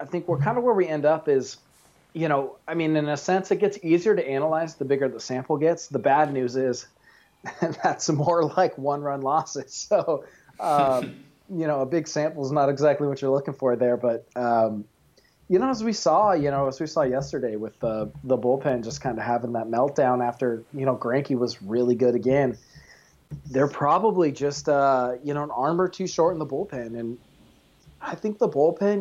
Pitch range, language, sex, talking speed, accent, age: 125-155 Hz, English, male, 210 wpm, American, 30-49